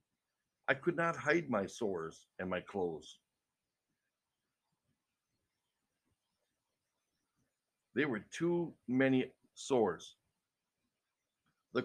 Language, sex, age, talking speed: English, male, 60-79, 75 wpm